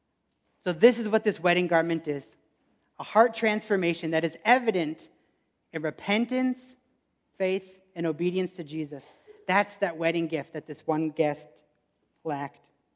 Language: English